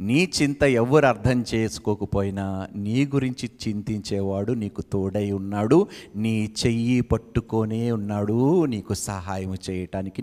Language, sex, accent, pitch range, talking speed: Telugu, male, native, 105-155 Hz, 105 wpm